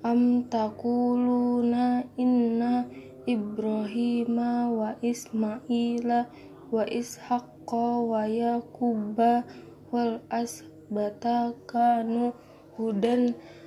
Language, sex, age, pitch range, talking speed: Indonesian, female, 20-39, 220-245 Hz, 50 wpm